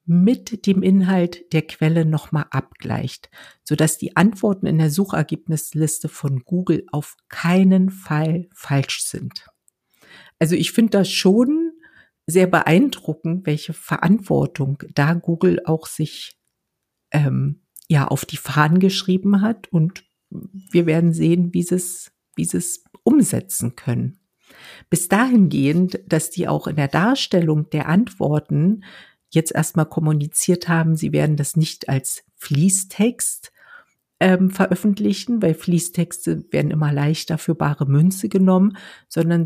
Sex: female